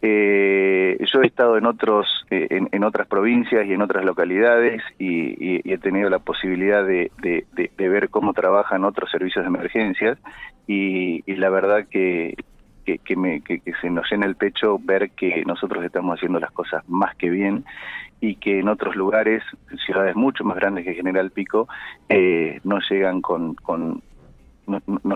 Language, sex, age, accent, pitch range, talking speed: Spanish, male, 30-49, Argentinian, 95-120 Hz, 185 wpm